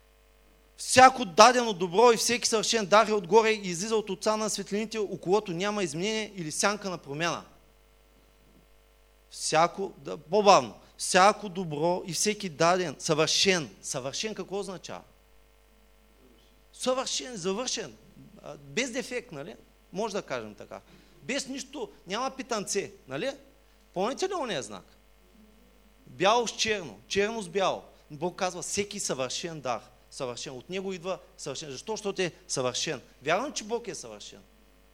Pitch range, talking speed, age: 135-210 Hz, 130 wpm, 30-49